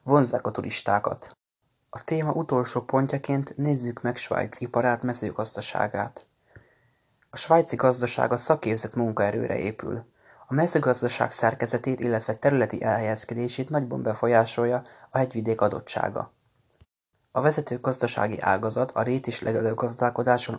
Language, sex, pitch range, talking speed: Hungarian, male, 110-130 Hz, 110 wpm